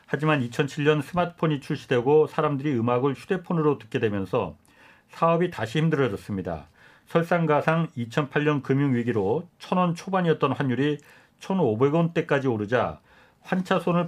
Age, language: 40-59, Korean